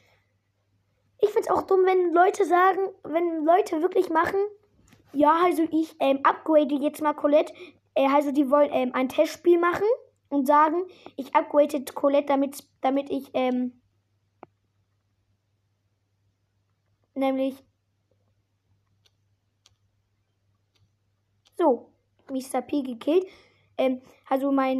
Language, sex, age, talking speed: German, female, 20-39, 105 wpm